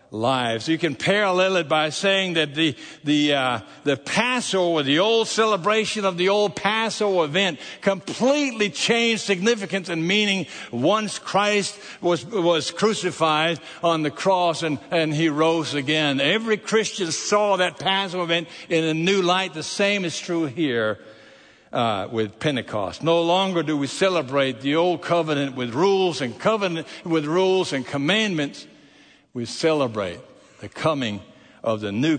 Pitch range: 140-195 Hz